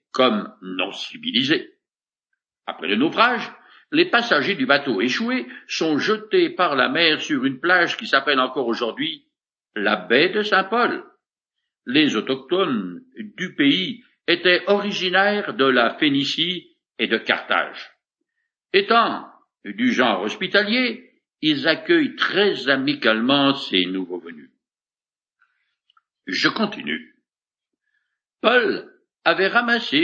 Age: 60-79